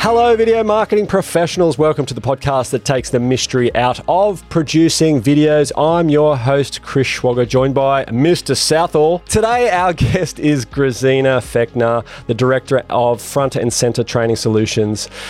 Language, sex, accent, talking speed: English, male, Australian, 155 wpm